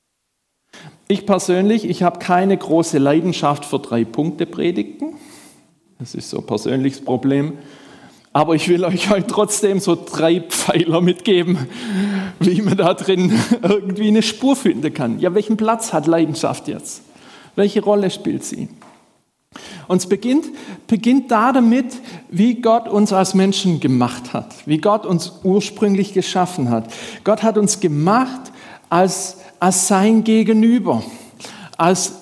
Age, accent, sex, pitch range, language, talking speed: 50-69, German, male, 170-215 Hz, German, 140 wpm